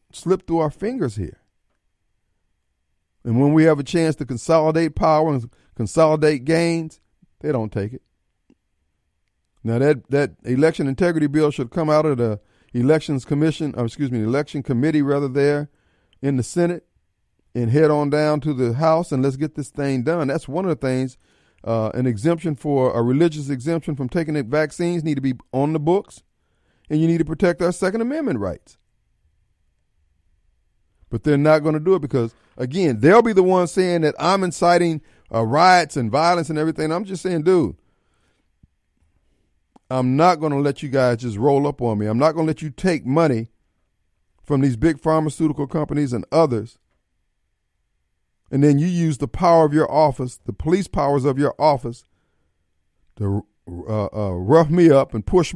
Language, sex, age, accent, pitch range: Japanese, male, 40-59, American, 115-160 Hz